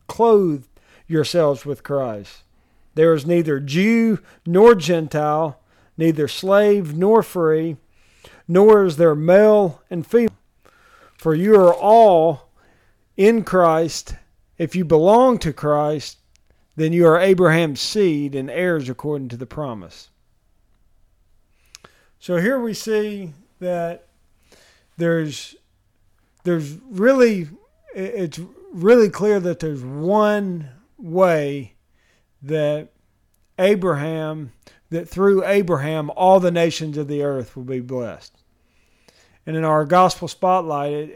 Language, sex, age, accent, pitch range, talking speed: English, male, 40-59, American, 145-195 Hz, 110 wpm